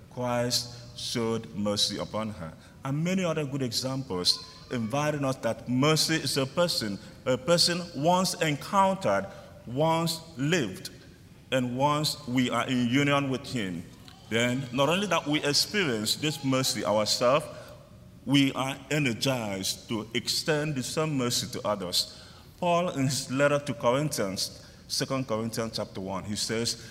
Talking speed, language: 140 wpm, English